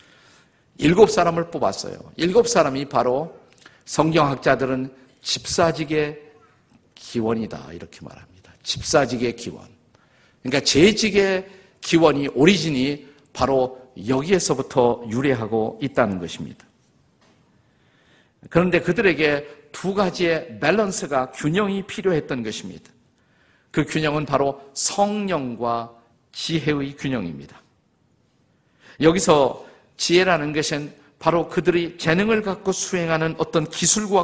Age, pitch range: 50-69, 135-180 Hz